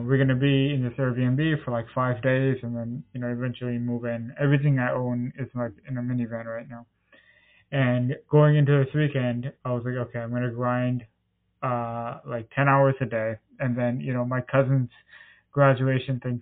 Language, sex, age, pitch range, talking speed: English, male, 20-39, 120-135 Hz, 200 wpm